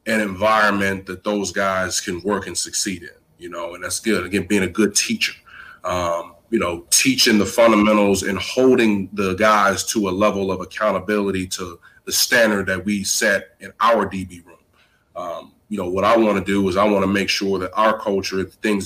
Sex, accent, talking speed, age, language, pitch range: male, American, 205 wpm, 30-49, English, 95-105 Hz